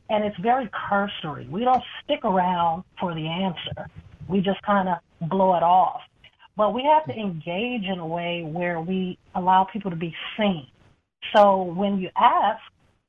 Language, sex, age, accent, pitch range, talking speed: English, female, 40-59, American, 170-205 Hz, 170 wpm